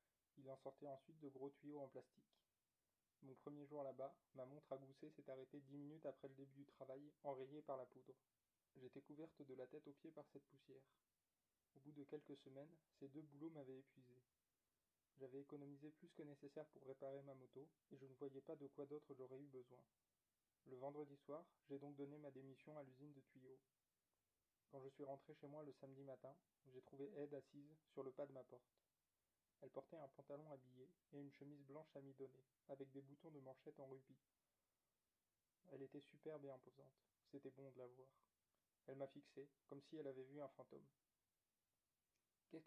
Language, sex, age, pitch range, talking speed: French, male, 20-39, 135-150 Hz, 195 wpm